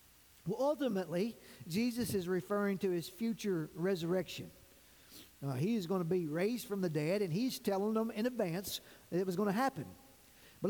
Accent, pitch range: American, 180-230 Hz